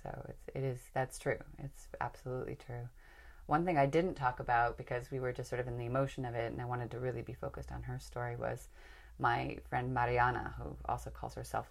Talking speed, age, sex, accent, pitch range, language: 220 wpm, 30-49, female, American, 115-135 Hz, English